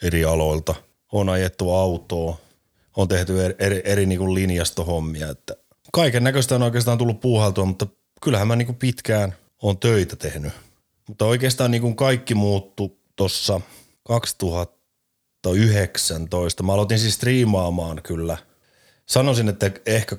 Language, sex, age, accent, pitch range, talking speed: Finnish, male, 30-49, native, 85-110 Hz, 130 wpm